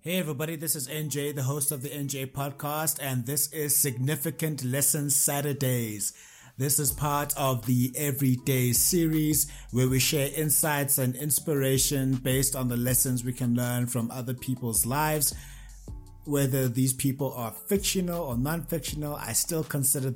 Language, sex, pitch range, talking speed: English, male, 120-145 Hz, 150 wpm